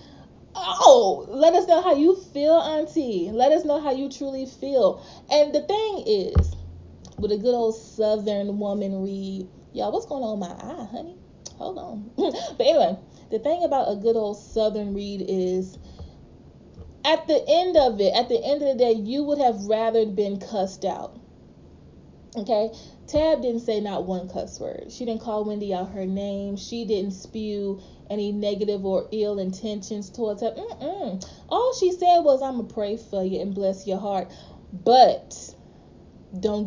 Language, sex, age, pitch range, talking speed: English, female, 20-39, 195-255 Hz, 170 wpm